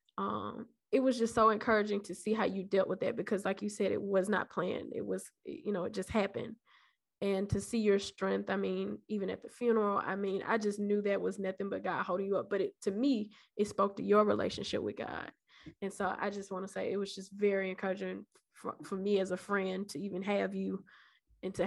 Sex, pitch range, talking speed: female, 190-205 Hz, 240 wpm